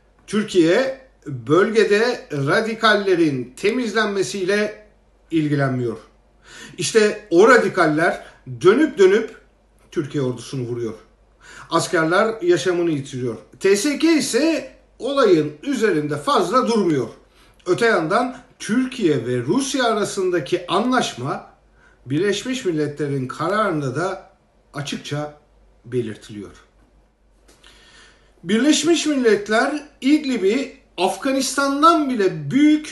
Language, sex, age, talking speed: German, male, 50-69, 75 wpm